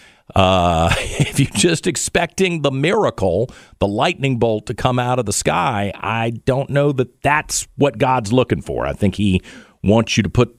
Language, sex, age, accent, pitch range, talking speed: English, male, 50-69, American, 95-145 Hz, 180 wpm